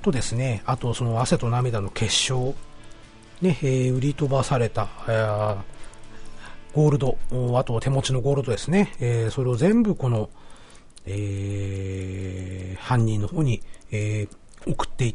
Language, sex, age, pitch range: Japanese, male, 40-59, 105-145 Hz